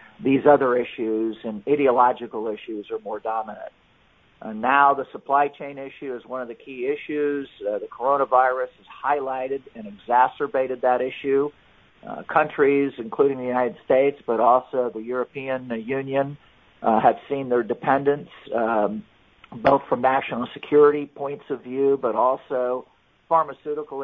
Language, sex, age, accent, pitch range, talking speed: English, male, 50-69, American, 120-140 Hz, 140 wpm